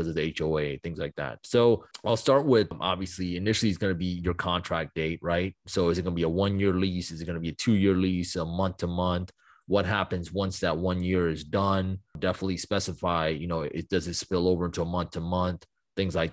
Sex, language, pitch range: male, English, 85-95 Hz